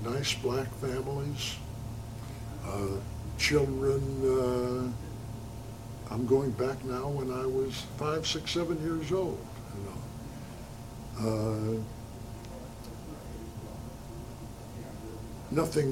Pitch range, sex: 115-140 Hz, male